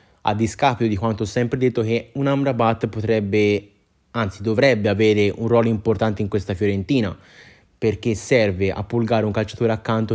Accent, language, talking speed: native, Italian, 160 wpm